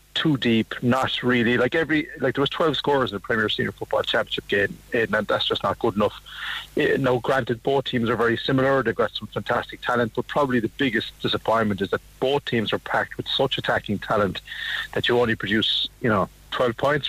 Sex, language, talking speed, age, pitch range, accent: male, English, 205 wpm, 30-49, 110-125 Hz, Irish